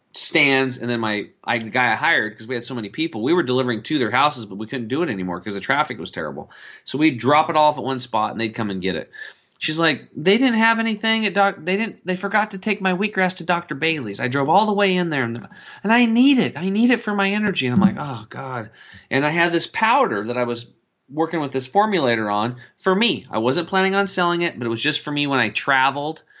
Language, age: English, 30-49